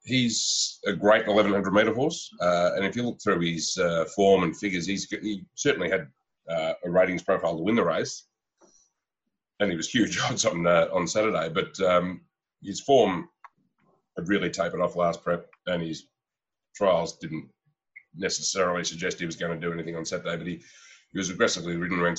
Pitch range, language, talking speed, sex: 80-90 Hz, English, 180 wpm, male